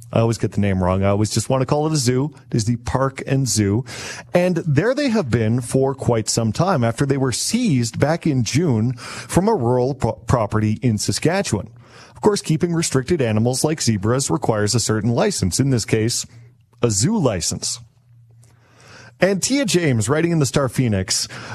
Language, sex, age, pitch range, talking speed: English, male, 40-59, 115-165 Hz, 190 wpm